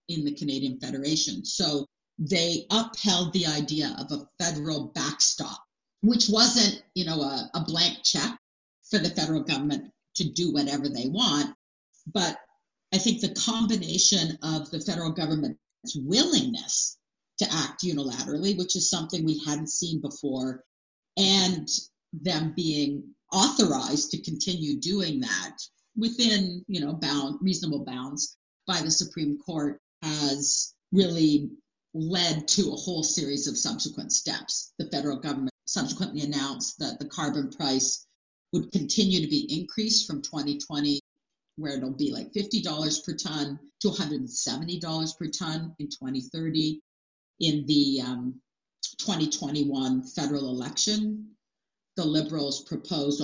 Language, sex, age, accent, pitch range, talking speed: English, female, 50-69, American, 145-190 Hz, 130 wpm